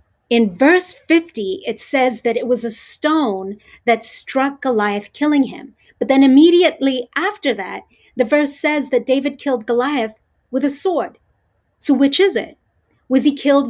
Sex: female